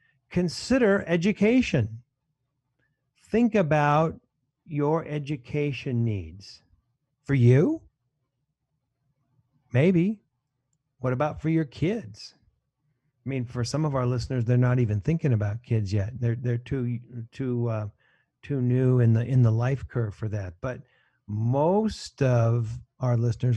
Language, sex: English, male